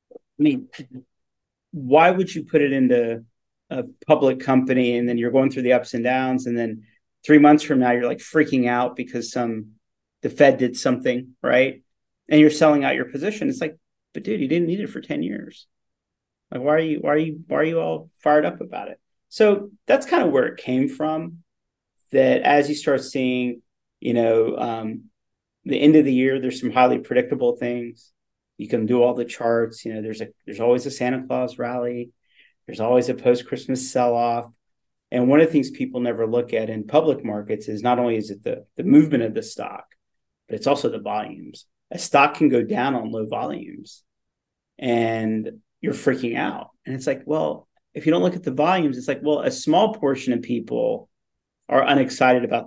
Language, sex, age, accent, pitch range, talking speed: English, male, 40-59, American, 120-150 Hz, 205 wpm